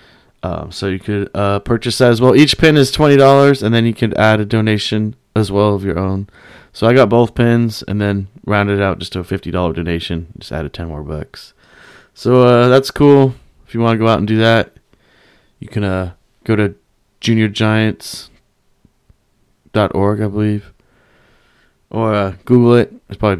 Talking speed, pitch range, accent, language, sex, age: 185 wpm, 100-125 Hz, American, English, male, 20-39